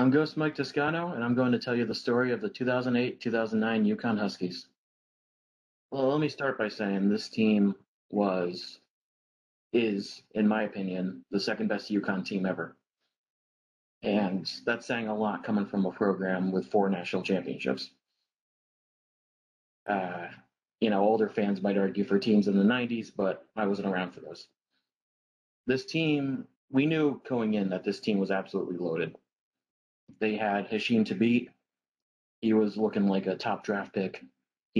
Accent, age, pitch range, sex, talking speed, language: American, 30-49, 95-115 Hz, male, 160 wpm, English